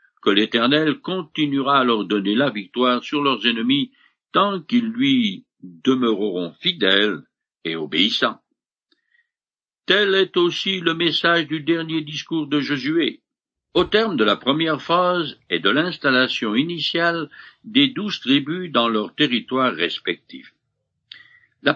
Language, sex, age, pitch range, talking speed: French, male, 60-79, 125-210 Hz, 125 wpm